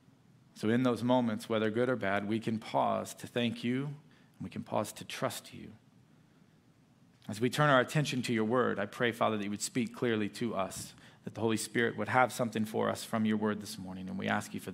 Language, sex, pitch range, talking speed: English, male, 120-160 Hz, 235 wpm